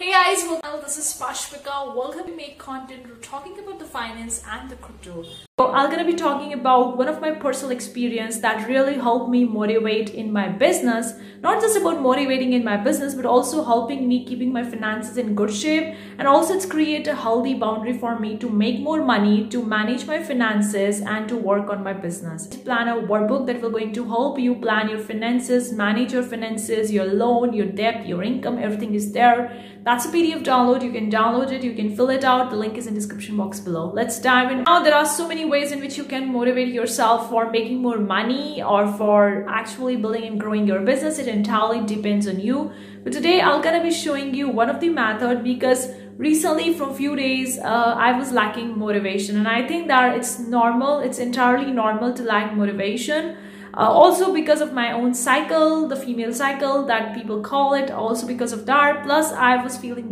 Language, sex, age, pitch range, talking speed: English, female, 30-49, 220-275 Hz, 210 wpm